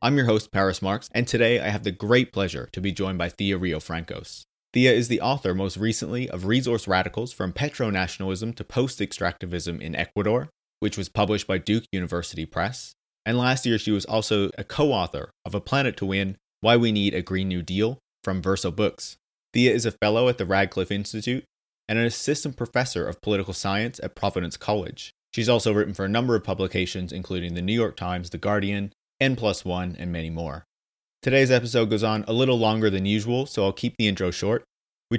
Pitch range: 95-115 Hz